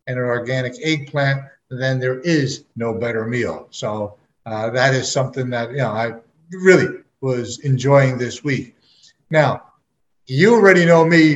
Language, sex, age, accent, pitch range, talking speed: English, male, 50-69, American, 130-165 Hz, 155 wpm